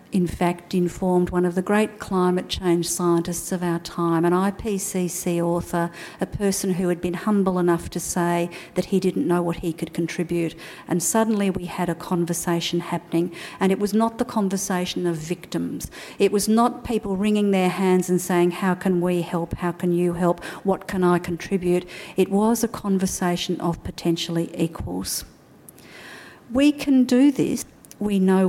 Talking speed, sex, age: 175 wpm, female, 50-69